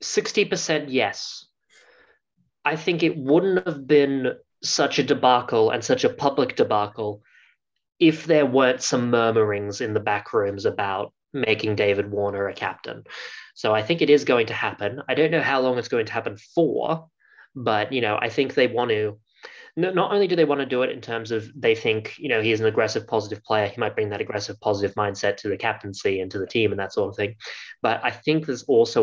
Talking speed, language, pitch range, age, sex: 205 wpm, English, 105-160 Hz, 20-39, male